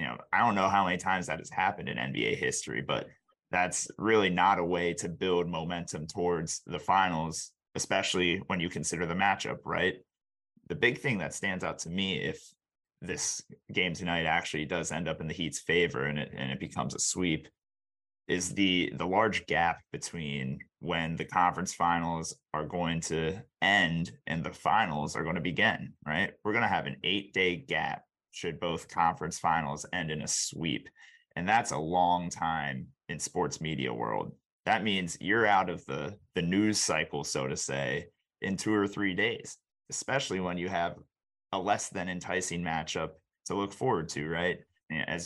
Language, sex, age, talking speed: English, male, 30-49, 185 wpm